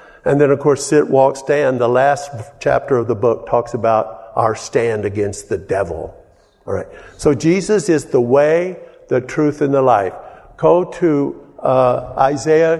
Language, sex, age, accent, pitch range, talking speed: English, male, 50-69, American, 115-155 Hz, 170 wpm